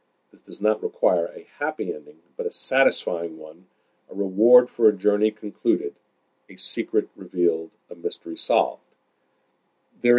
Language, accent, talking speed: English, American, 140 wpm